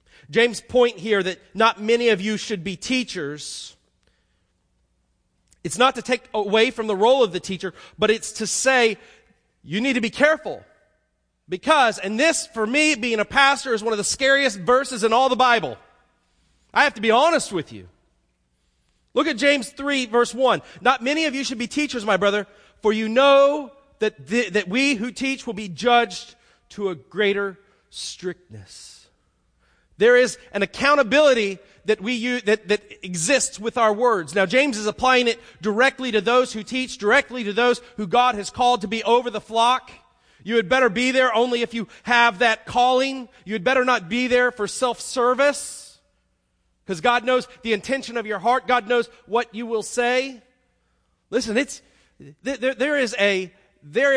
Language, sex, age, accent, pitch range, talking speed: English, male, 40-59, American, 205-255 Hz, 180 wpm